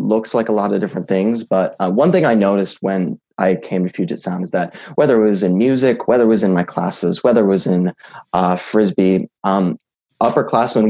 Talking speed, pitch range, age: 220 wpm, 100-120 Hz, 20-39